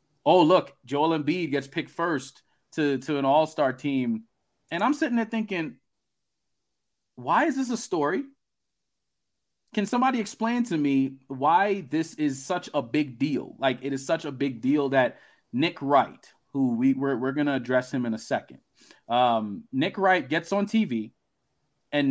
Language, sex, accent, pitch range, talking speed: English, male, American, 135-185 Hz, 170 wpm